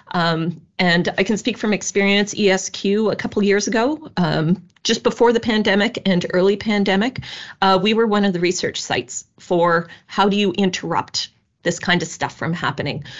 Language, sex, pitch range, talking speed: English, female, 165-205 Hz, 175 wpm